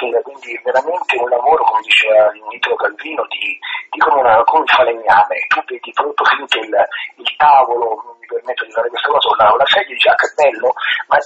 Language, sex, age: Italian, male, 30-49